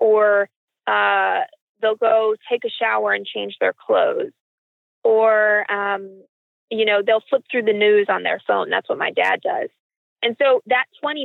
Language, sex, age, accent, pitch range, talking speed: English, female, 20-39, American, 215-290 Hz, 170 wpm